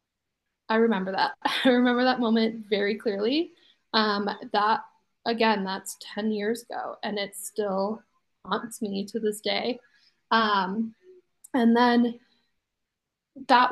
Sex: female